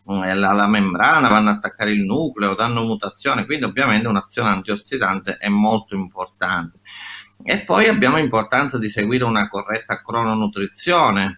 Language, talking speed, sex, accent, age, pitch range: Italian, 135 wpm, male, native, 30-49, 100-125 Hz